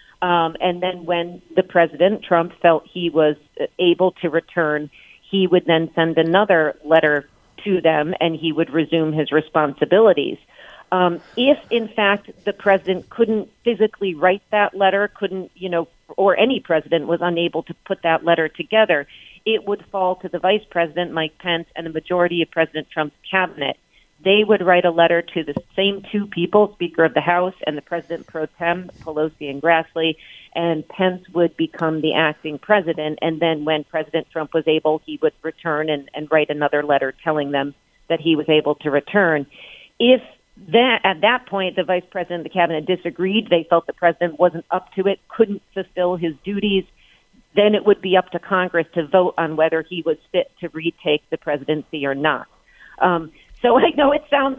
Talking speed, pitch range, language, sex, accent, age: 185 wpm, 160-195 Hz, English, female, American, 40-59